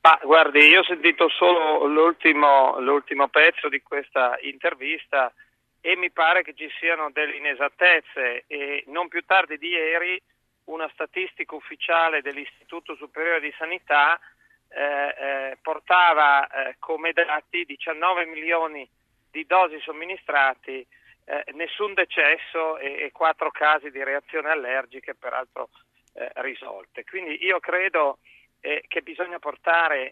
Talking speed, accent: 125 wpm, native